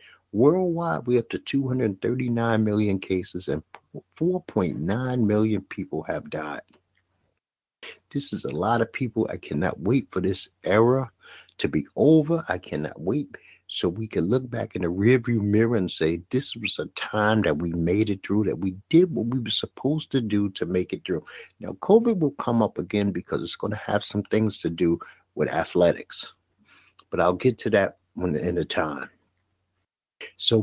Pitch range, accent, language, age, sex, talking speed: 95-125 Hz, American, English, 60-79, male, 180 wpm